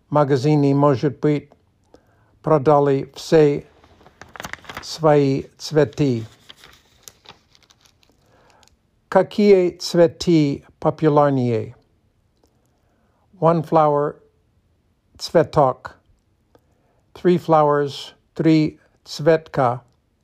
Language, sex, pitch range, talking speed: Russian, male, 120-155 Hz, 50 wpm